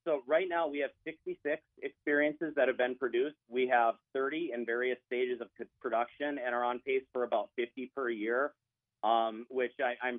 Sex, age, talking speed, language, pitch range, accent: male, 40-59, 190 wpm, English, 115-145 Hz, American